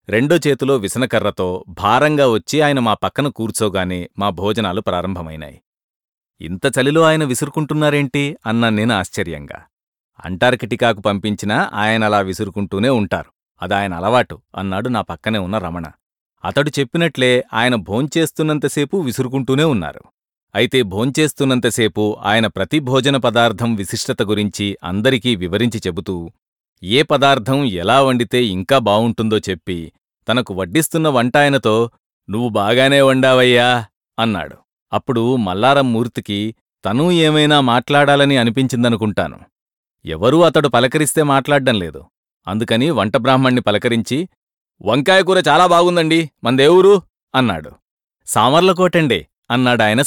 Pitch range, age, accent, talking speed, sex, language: 105-140 Hz, 40-59, Indian, 90 wpm, male, English